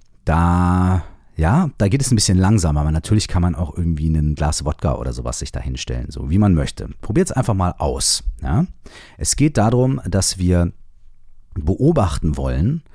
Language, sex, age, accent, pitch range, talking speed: German, male, 40-59, German, 75-100 Hz, 180 wpm